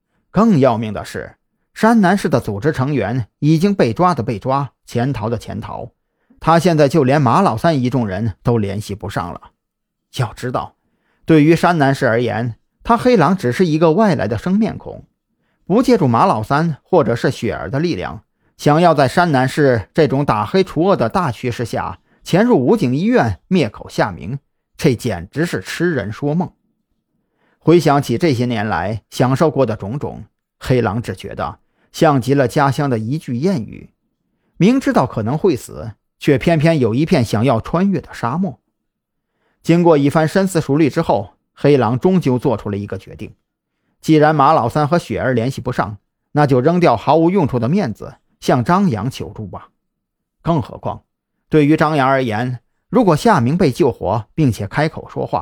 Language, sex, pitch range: Chinese, male, 120-165 Hz